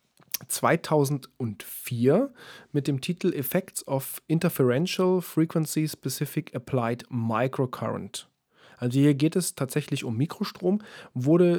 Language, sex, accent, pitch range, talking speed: German, male, German, 125-170 Hz, 100 wpm